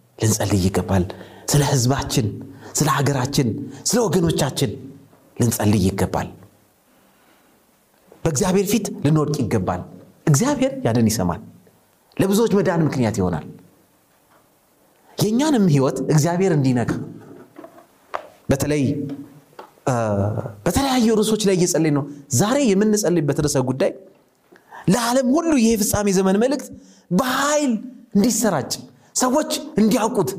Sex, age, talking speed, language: male, 30-49, 80 wpm, Amharic